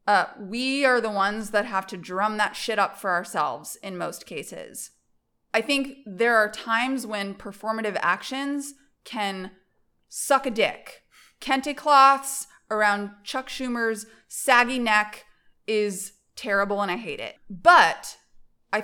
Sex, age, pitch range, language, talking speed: female, 20-39, 195-240 Hz, English, 140 wpm